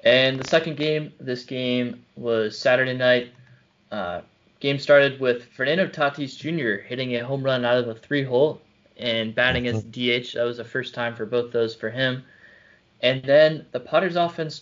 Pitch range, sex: 120-140 Hz, male